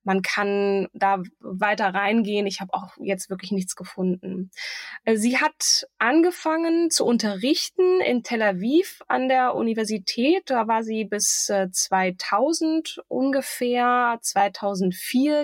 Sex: female